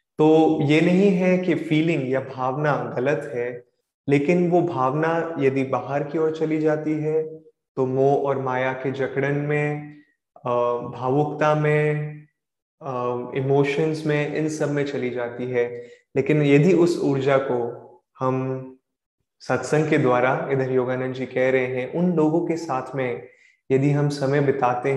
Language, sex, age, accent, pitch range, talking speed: Hindi, male, 20-39, native, 130-155 Hz, 145 wpm